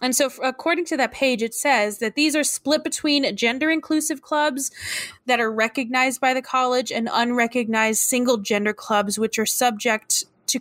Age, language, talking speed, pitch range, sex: 20-39, English, 175 wpm, 220-265 Hz, female